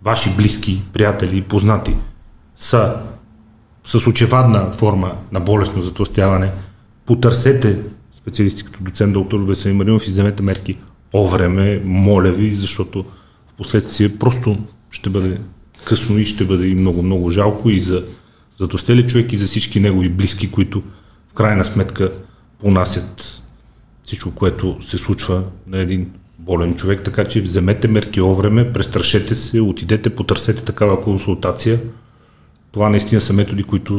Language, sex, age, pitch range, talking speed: Bulgarian, male, 40-59, 95-110 Hz, 135 wpm